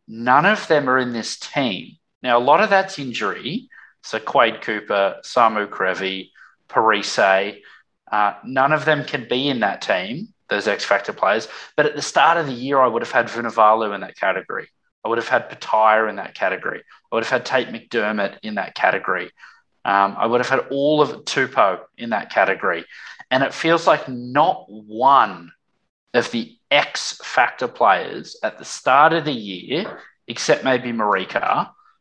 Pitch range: 110-140 Hz